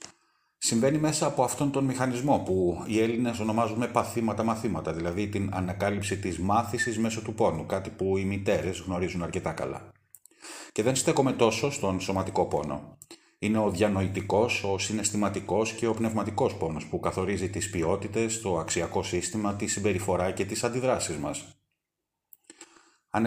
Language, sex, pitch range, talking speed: Greek, male, 95-115 Hz, 145 wpm